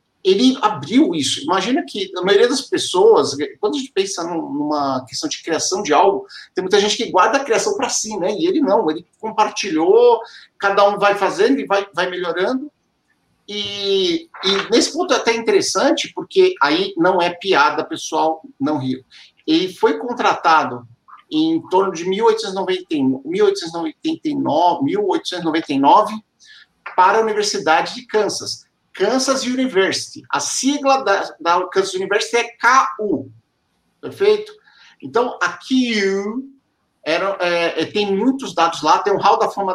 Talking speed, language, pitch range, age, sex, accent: 145 wpm, Portuguese, 175-285 Hz, 50-69, male, Brazilian